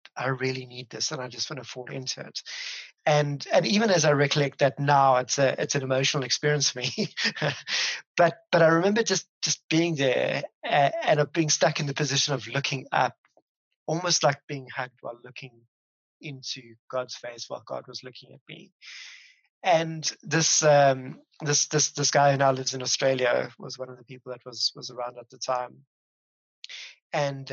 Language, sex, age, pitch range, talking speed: English, male, 30-49, 125-145 Hz, 190 wpm